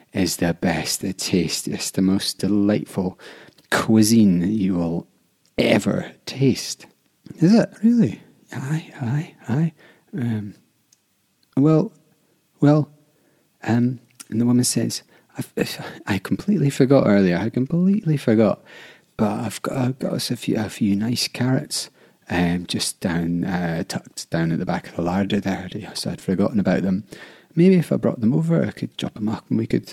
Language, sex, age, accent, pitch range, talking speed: English, male, 30-49, British, 95-150 Hz, 160 wpm